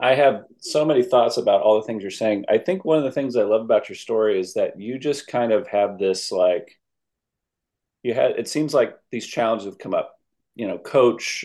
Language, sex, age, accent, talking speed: English, male, 30-49, American, 230 wpm